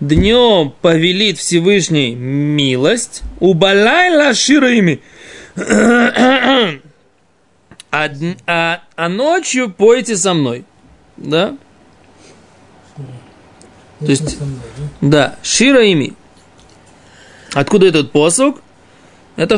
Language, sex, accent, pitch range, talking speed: Russian, male, native, 140-200 Hz, 65 wpm